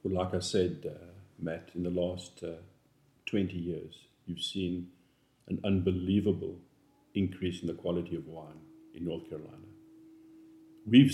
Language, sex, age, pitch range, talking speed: English, male, 50-69, 90-135 Hz, 140 wpm